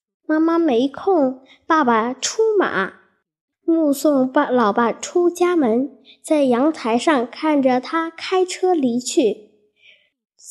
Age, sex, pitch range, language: 10-29, female, 240-335 Hz, Chinese